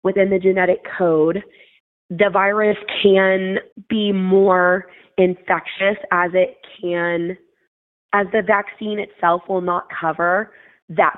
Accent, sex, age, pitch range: American, female, 20-39, 180-205 Hz